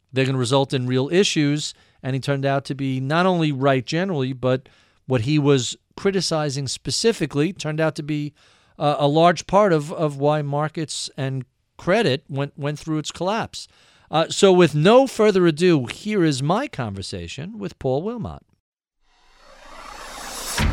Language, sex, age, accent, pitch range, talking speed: English, male, 40-59, American, 130-185 Hz, 160 wpm